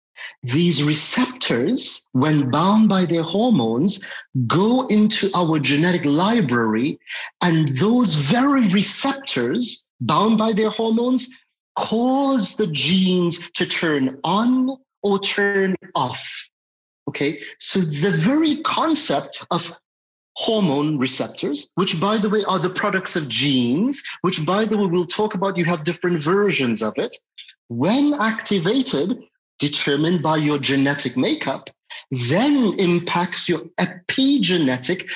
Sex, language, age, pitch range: male, English, 50-69, 160-220 Hz